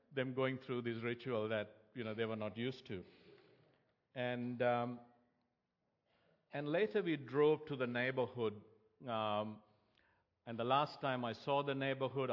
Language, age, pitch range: English, 60-79, 115-135 Hz